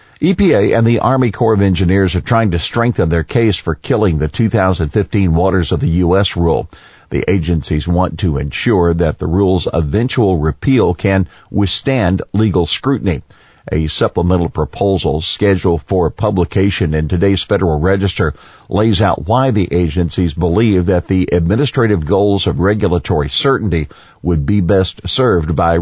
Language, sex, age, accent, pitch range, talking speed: English, male, 50-69, American, 85-105 Hz, 150 wpm